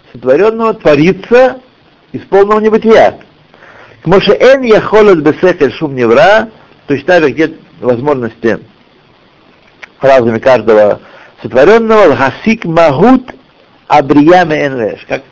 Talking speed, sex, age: 80 wpm, male, 60-79